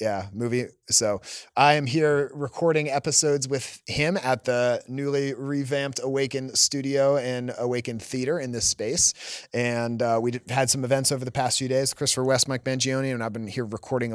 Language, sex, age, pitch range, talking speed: English, male, 30-49, 115-150 Hz, 180 wpm